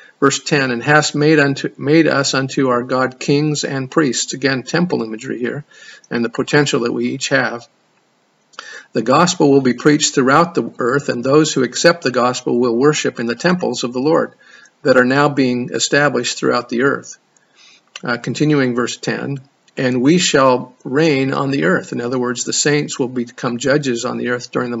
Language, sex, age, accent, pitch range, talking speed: English, male, 50-69, American, 125-145 Hz, 190 wpm